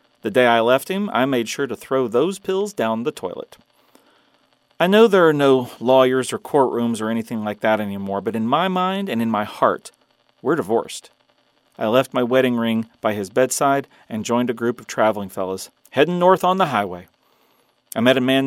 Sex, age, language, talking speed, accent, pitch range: male, 40-59, English, 200 wpm, American, 115-140 Hz